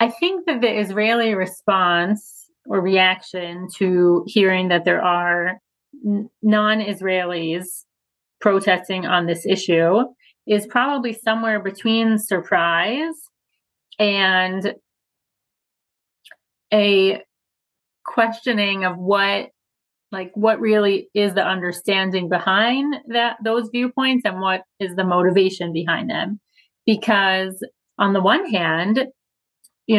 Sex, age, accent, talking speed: female, 30-49, American, 105 wpm